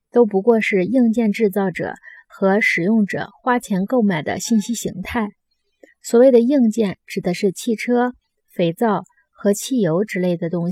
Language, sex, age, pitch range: Chinese, female, 20-39, 195-240 Hz